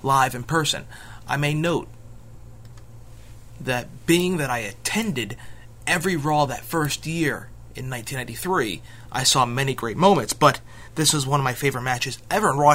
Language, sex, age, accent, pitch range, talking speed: English, male, 30-49, American, 115-145 Hz, 160 wpm